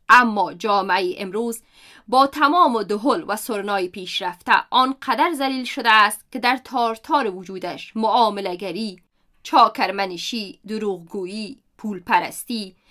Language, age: Persian, 30-49